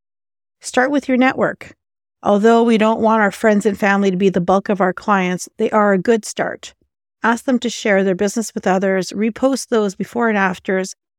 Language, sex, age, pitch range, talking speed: English, female, 40-59, 190-240 Hz, 200 wpm